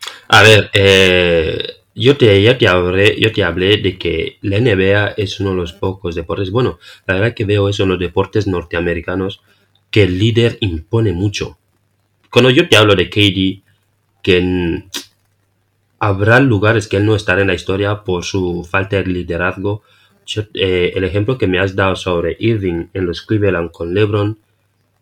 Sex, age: male, 30-49